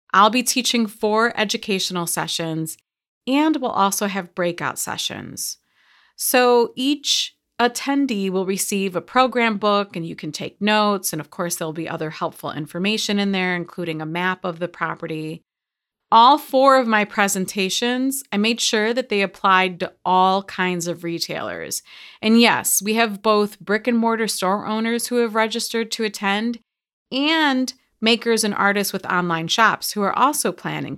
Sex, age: female, 30-49